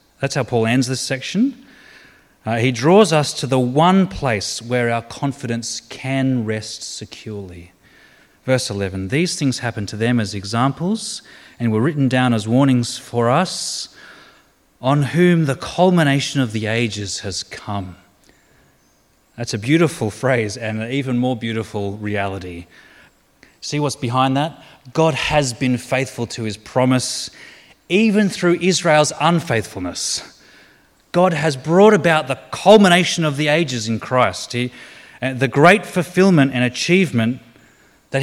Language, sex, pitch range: English, male, 120-170 Hz